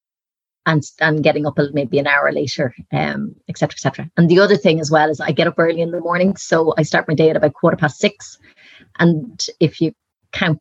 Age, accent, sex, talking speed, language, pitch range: 30-49, Irish, female, 230 wpm, English, 150-170 Hz